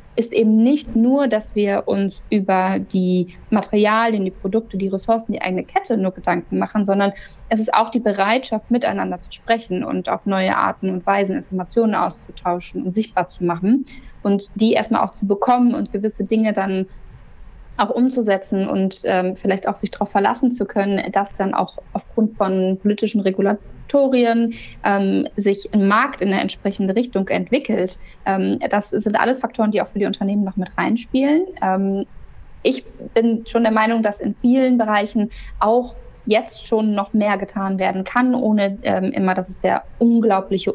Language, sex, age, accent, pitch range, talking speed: German, female, 20-39, German, 190-225 Hz, 170 wpm